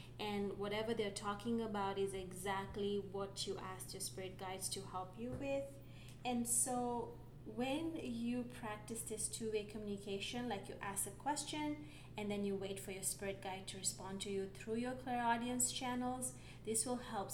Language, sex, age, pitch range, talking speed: English, female, 20-39, 190-230 Hz, 170 wpm